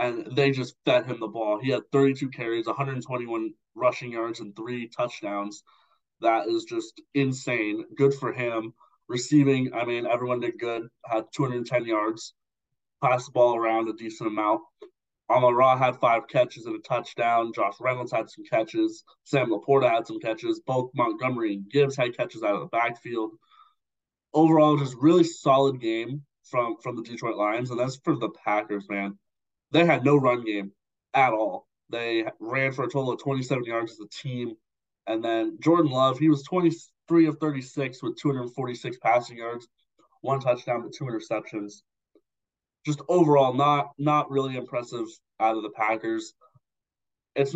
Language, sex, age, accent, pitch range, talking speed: English, male, 20-39, American, 110-140 Hz, 170 wpm